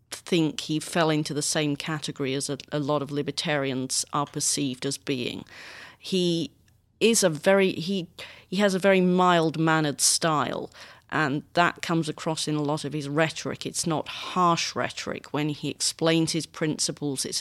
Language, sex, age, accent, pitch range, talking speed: English, female, 40-59, British, 150-175 Hz, 165 wpm